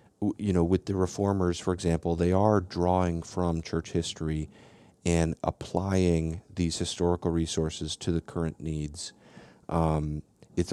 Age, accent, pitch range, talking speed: 40-59, American, 80-95 Hz, 135 wpm